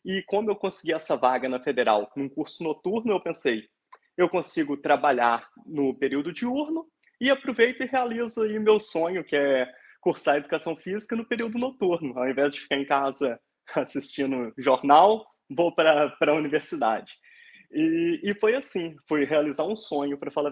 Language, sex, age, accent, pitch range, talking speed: Portuguese, male, 20-39, Brazilian, 155-210 Hz, 165 wpm